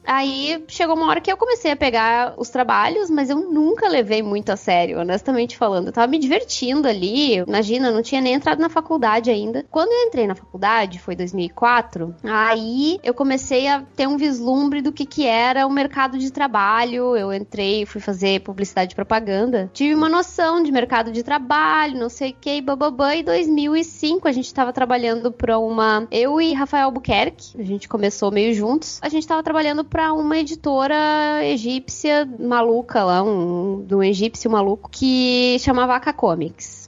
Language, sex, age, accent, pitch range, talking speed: Portuguese, female, 10-29, Brazilian, 225-295 Hz, 180 wpm